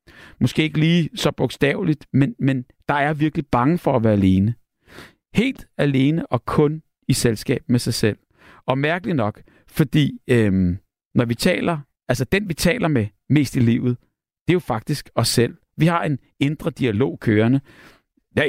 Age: 60-79